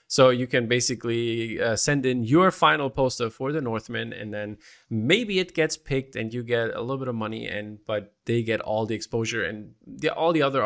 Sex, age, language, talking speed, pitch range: male, 20-39, German, 215 wpm, 110-130 Hz